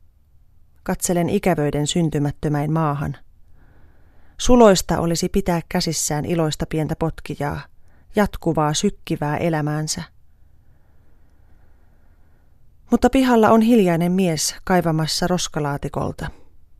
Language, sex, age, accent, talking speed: Finnish, female, 30-49, native, 75 wpm